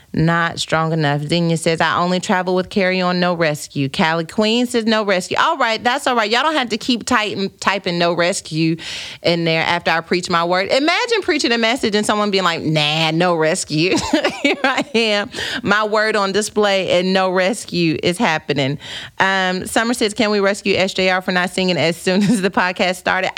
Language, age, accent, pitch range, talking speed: English, 30-49, American, 180-235 Hz, 200 wpm